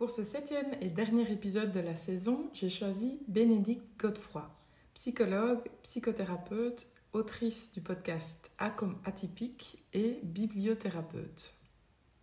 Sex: female